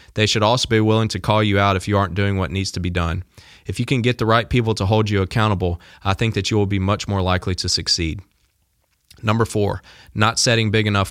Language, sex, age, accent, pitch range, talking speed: English, male, 20-39, American, 95-110 Hz, 250 wpm